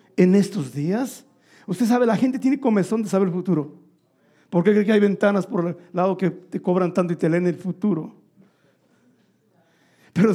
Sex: male